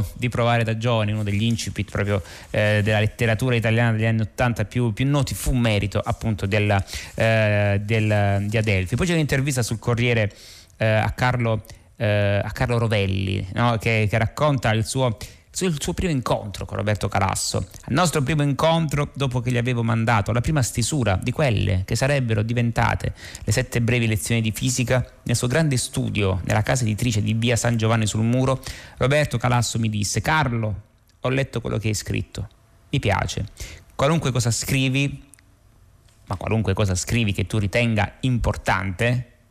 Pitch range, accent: 105-125 Hz, native